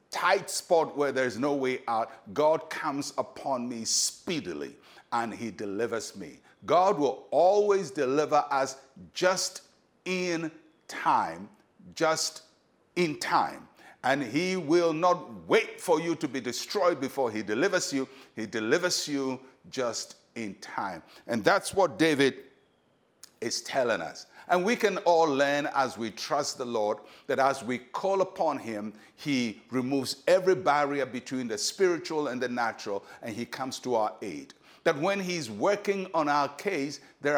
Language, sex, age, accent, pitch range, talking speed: English, male, 60-79, Nigerian, 130-175 Hz, 150 wpm